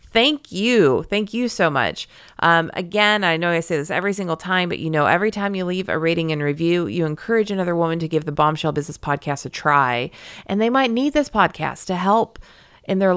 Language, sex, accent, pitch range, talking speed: English, female, American, 150-195 Hz, 225 wpm